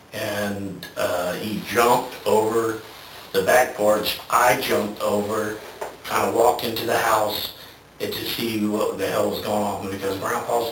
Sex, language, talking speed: male, English, 150 wpm